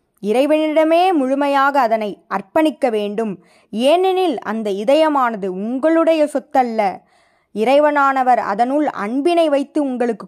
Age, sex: 20-39, female